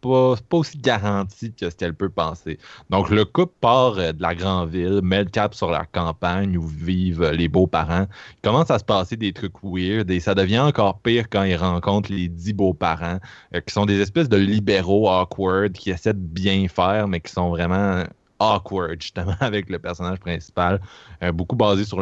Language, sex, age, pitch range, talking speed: French, male, 20-39, 90-105 Hz, 205 wpm